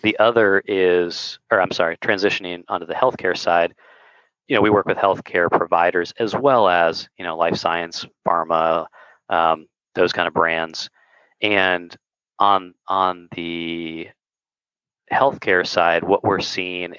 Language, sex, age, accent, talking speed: English, male, 30-49, American, 140 wpm